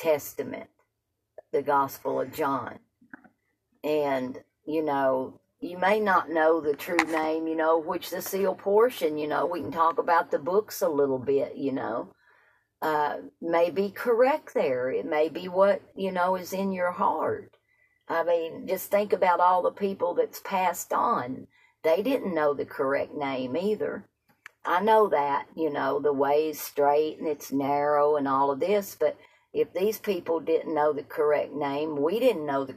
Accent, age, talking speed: American, 50-69, 175 wpm